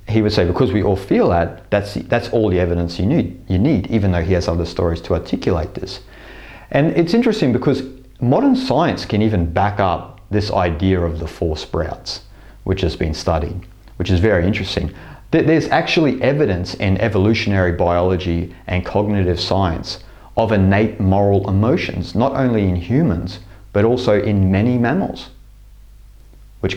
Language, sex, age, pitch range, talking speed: English, male, 30-49, 95-115 Hz, 165 wpm